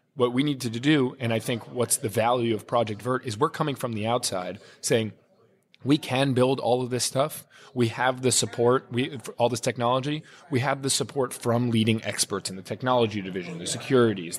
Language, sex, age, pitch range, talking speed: English, male, 20-39, 110-130 Hz, 205 wpm